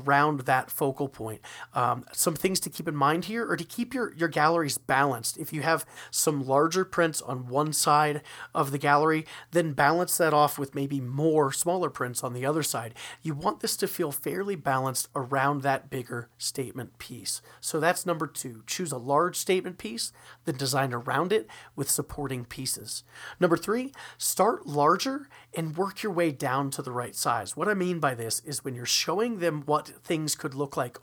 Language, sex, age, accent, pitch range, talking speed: English, male, 30-49, American, 130-170 Hz, 195 wpm